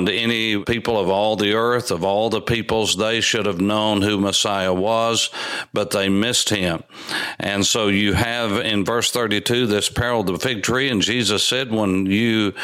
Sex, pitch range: male, 100-120 Hz